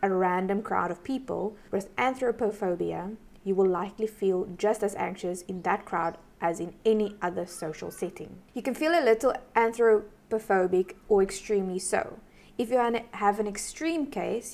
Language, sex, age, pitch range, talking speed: English, female, 20-39, 185-220 Hz, 155 wpm